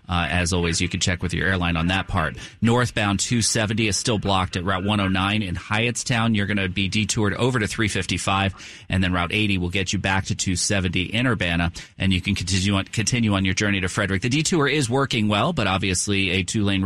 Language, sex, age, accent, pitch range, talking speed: English, male, 30-49, American, 95-110 Hz, 220 wpm